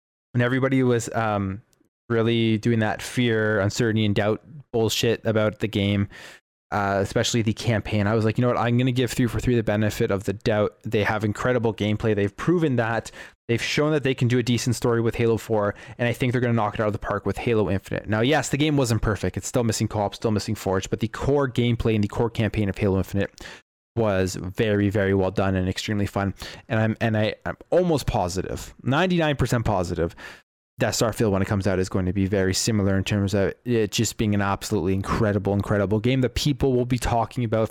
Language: English